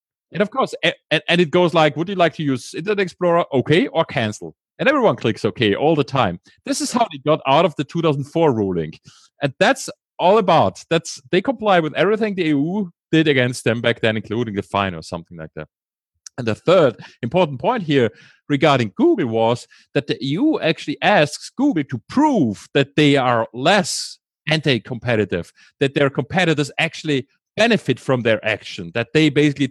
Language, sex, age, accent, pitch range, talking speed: English, male, 30-49, German, 120-170 Hz, 185 wpm